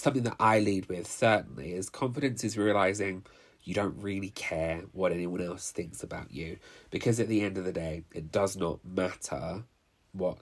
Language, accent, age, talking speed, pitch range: English, British, 30-49, 185 wpm, 95-125 Hz